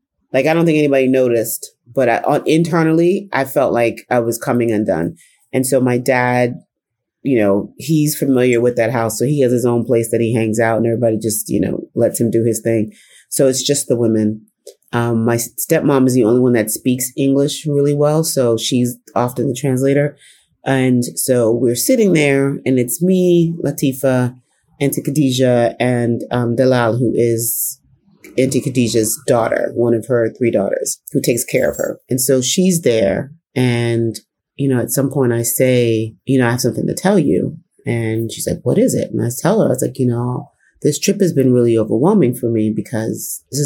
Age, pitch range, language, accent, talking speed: 30-49, 115-140 Hz, English, American, 195 wpm